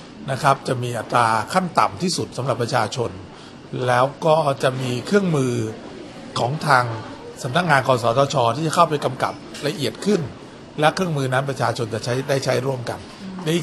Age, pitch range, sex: 60-79, 120-150 Hz, male